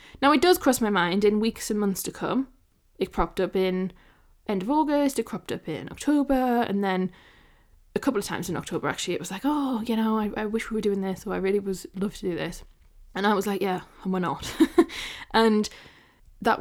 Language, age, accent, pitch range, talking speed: English, 10-29, British, 180-225 Hz, 230 wpm